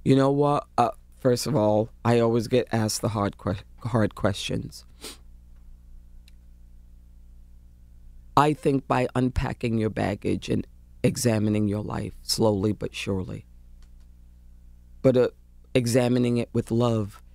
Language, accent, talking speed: English, American, 120 wpm